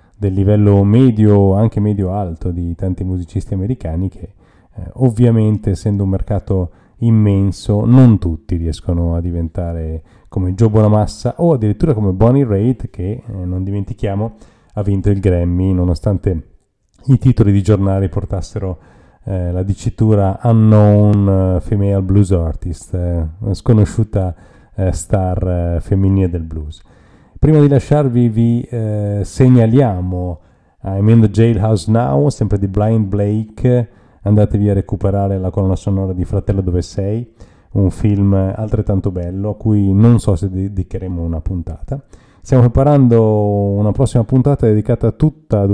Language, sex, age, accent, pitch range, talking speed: Italian, male, 30-49, native, 90-110 Hz, 135 wpm